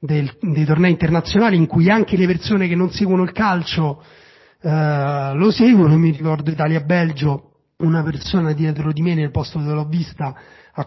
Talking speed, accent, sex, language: 165 wpm, native, male, Italian